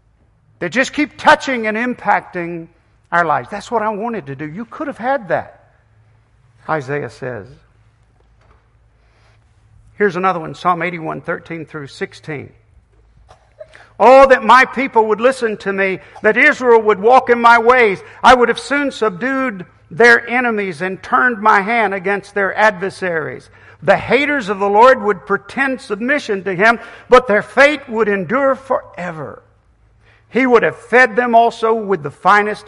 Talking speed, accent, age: 150 wpm, American, 50-69